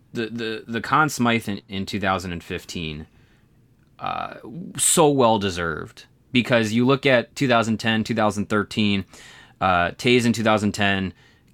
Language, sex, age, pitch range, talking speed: English, male, 20-39, 95-115 Hz, 110 wpm